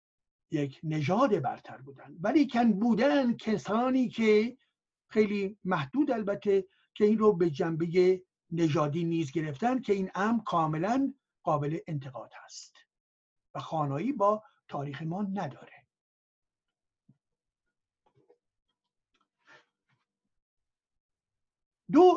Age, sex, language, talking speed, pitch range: 60-79, male, Persian, 90 wpm, 160-220 Hz